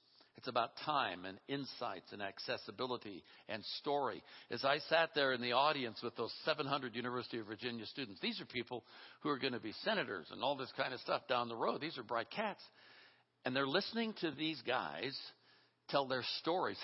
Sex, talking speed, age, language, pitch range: male, 190 wpm, 60-79, English, 120-155 Hz